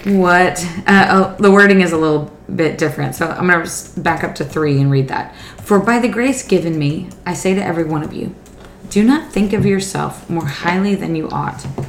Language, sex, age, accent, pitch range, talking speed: English, female, 20-39, American, 145-195 Hz, 215 wpm